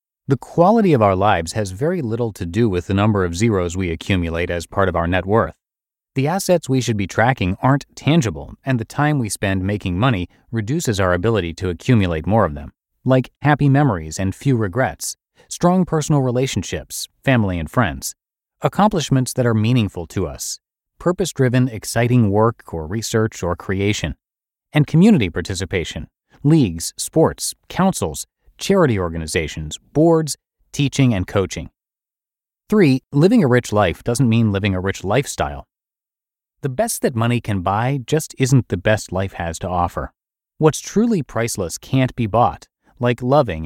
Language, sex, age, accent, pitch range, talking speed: English, male, 30-49, American, 95-135 Hz, 160 wpm